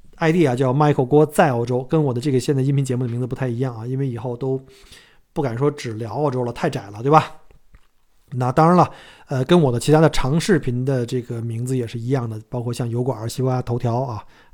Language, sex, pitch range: Chinese, male, 125-175 Hz